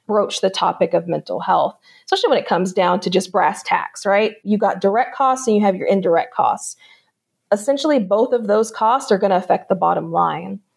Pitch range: 195-235 Hz